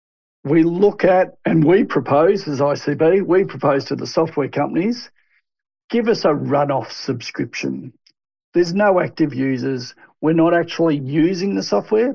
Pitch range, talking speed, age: 140-185 Hz, 145 wpm, 60-79